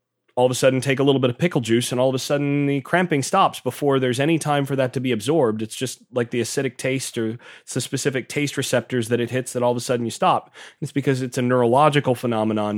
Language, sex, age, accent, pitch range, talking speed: English, male, 30-49, American, 120-140 Hz, 265 wpm